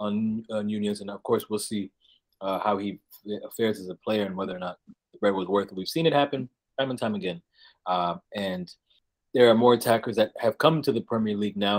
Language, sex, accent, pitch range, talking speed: English, male, American, 105-130 Hz, 230 wpm